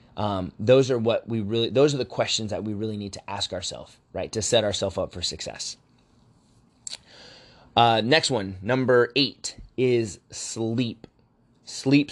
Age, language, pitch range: 20-39, English, 105-120 Hz